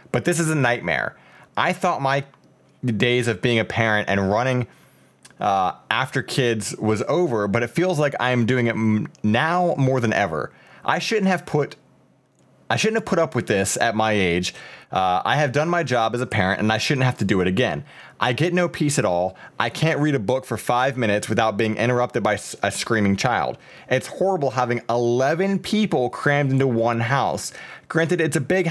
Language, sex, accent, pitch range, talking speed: English, male, American, 115-155 Hz, 205 wpm